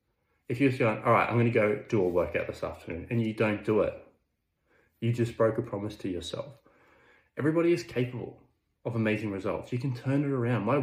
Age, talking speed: 20-39, 210 wpm